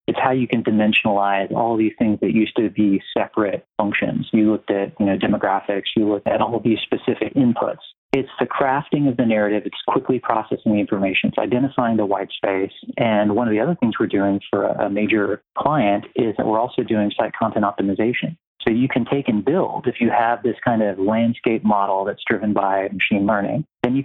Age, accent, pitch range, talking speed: 30-49, American, 100-120 Hz, 210 wpm